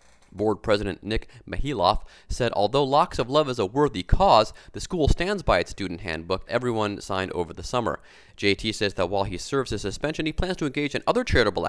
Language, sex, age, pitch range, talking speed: English, male, 30-49, 100-150 Hz, 205 wpm